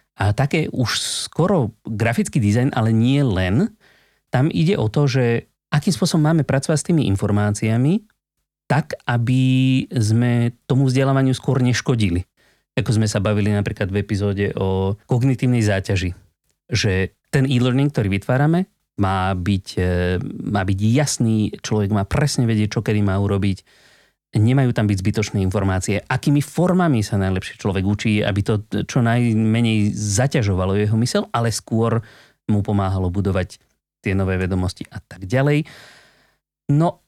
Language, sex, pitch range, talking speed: Slovak, male, 100-130 Hz, 140 wpm